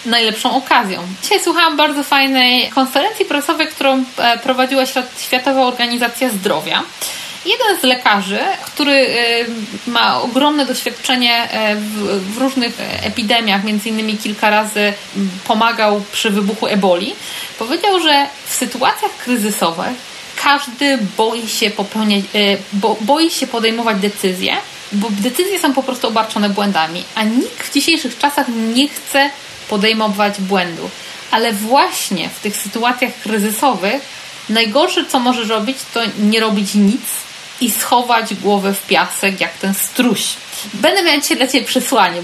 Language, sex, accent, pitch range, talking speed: Polish, female, native, 210-270 Hz, 125 wpm